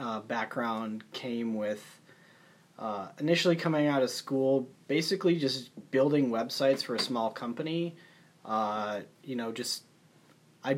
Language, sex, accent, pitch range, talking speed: English, male, American, 110-145 Hz, 130 wpm